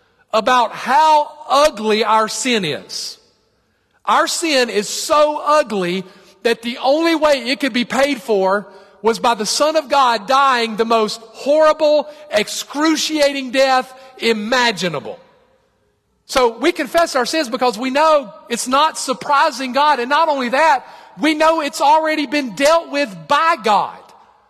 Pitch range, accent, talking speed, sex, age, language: 255-315 Hz, American, 140 wpm, male, 50-69, English